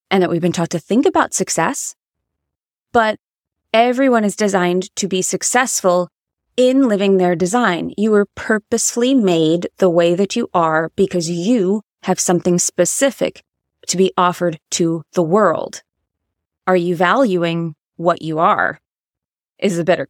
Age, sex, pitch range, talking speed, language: 20-39, female, 170-220 Hz, 145 wpm, English